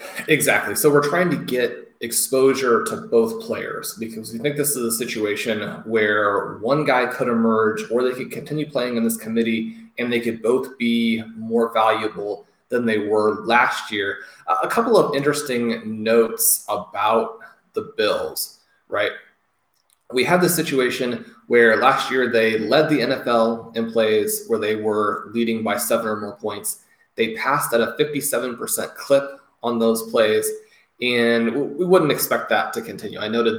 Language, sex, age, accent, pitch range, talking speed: English, male, 20-39, American, 110-135 Hz, 165 wpm